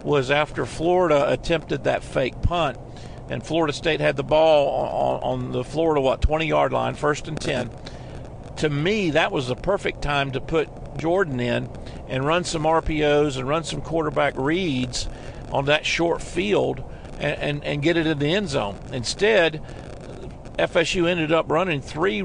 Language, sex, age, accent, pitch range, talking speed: English, male, 50-69, American, 135-160 Hz, 165 wpm